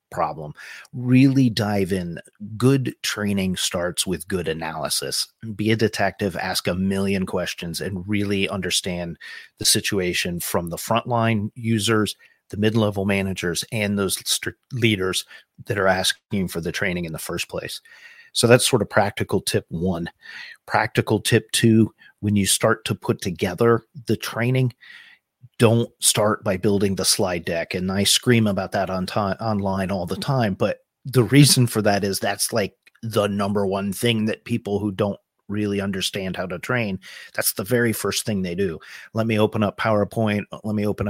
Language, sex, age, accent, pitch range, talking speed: English, male, 40-59, American, 95-115 Hz, 165 wpm